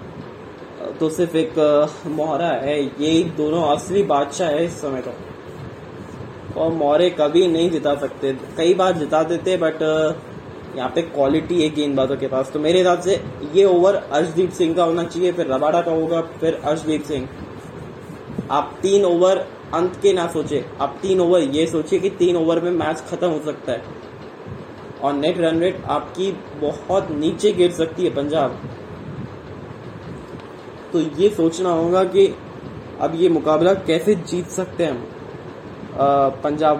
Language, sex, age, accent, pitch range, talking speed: English, male, 20-39, Indian, 150-185 Hz, 115 wpm